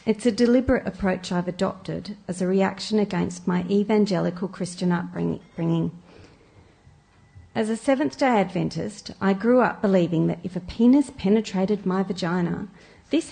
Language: English